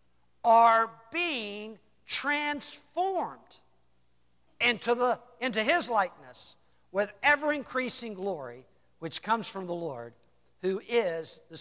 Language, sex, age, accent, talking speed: English, male, 60-79, American, 105 wpm